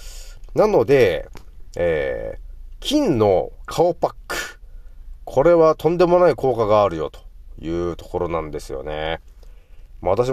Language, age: Japanese, 30-49